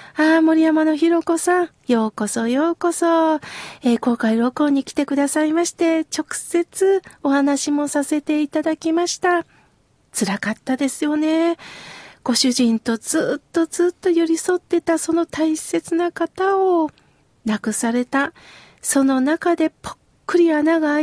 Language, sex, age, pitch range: Japanese, female, 40-59, 250-335 Hz